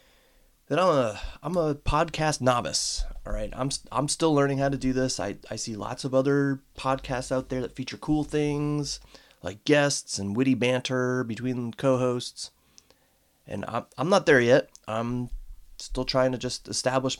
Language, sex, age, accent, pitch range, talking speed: English, male, 30-49, American, 105-140 Hz, 175 wpm